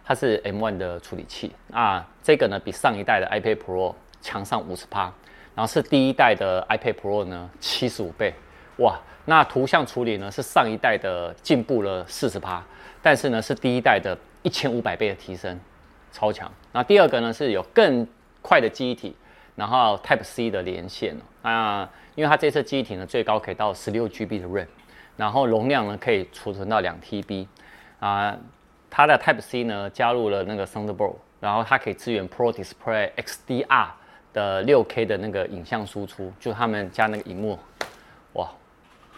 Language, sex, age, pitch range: Chinese, male, 30-49, 95-120 Hz